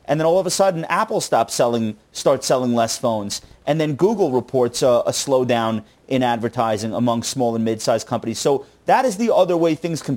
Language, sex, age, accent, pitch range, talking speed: English, male, 30-49, American, 120-165 Hz, 200 wpm